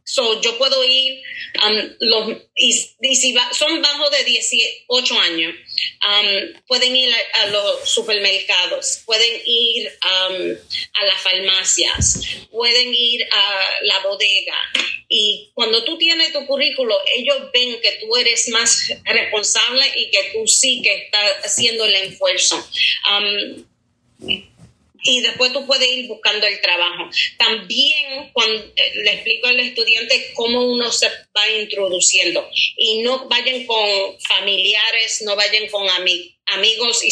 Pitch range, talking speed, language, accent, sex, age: 210-275 Hz, 140 wpm, English, American, female, 30-49